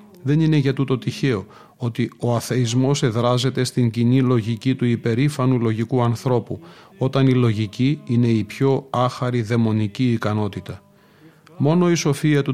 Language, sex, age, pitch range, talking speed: Greek, male, 40-59, 115-140 Hz, 140 wpm